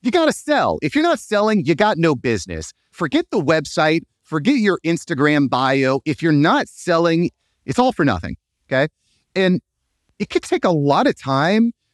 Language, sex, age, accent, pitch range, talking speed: English, male, 30-49, American, 120-165 Hz, 180 wpm